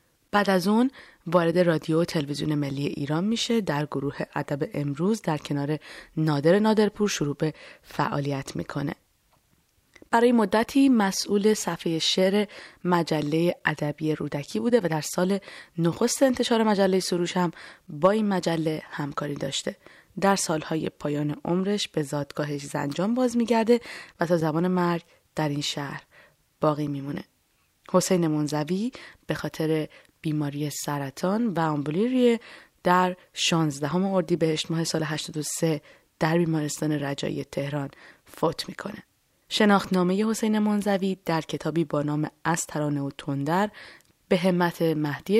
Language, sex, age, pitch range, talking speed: Persian, female, 20-39, 150-200 Hz, 130 wpm